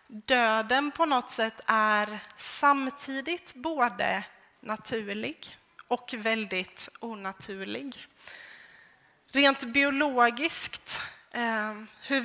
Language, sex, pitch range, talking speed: Swedish, female, 210-265 Hz, 70 wpm